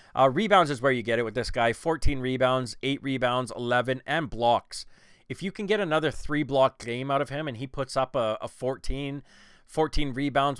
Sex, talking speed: male, 205 wpm